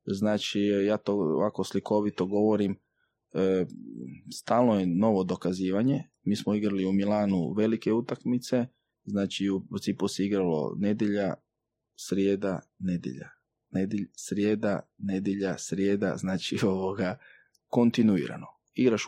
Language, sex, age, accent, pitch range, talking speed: Croatian, male, 20-39, native, 90-105 Hz, 105 wpm